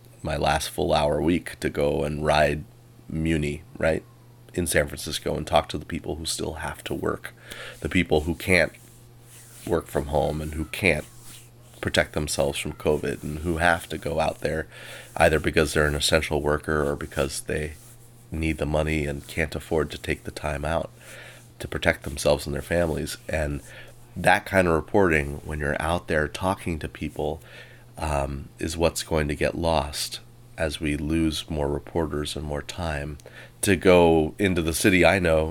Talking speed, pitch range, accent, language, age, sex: 175 wpm, 75-90 Hz, American, English, 30-49, male